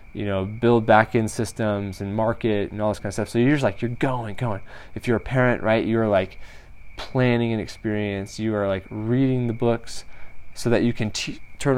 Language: English